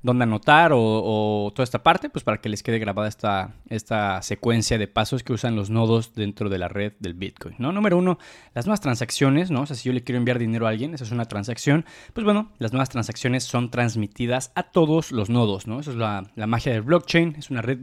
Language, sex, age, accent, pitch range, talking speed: Spanish, male, 20-39, Mexican, 110-145 Hz, 240 wpm